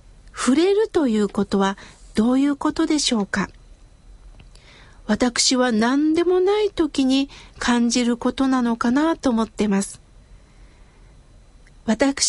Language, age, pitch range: Japanese, 60-79, 215-310 Hz